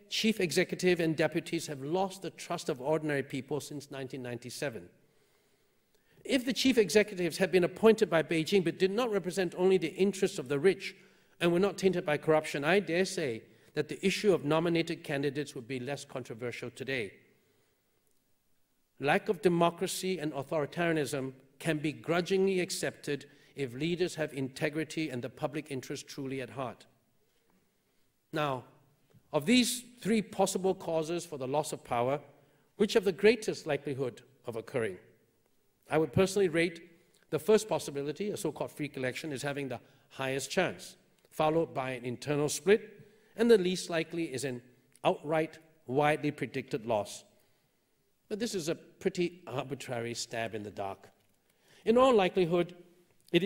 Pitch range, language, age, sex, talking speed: 140-185 Hz, English, 60-79, male, 150 wpm